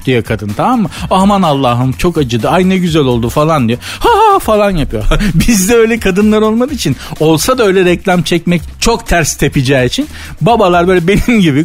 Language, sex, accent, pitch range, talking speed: Turkish, male, native, 130-195 Hz, 185 wpm